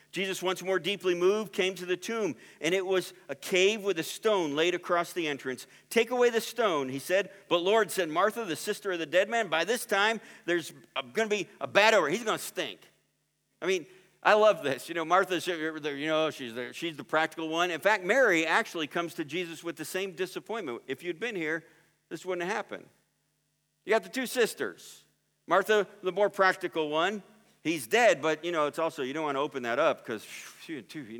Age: 50-69